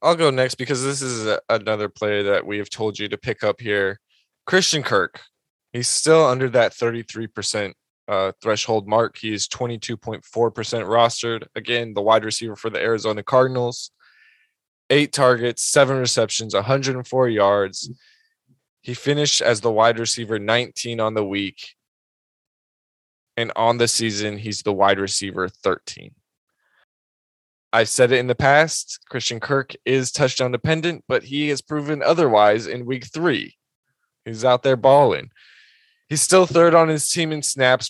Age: 20-39